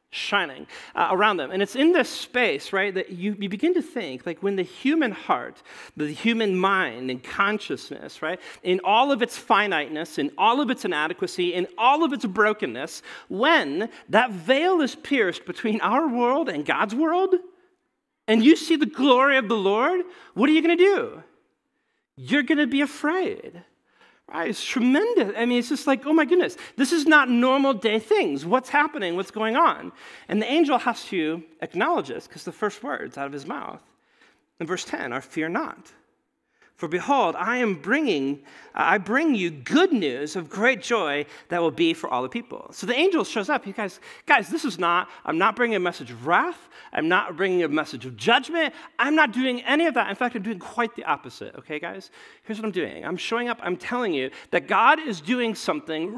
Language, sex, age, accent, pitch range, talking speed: English, male, 40-59, American, 185-295 Hz, 205 wpm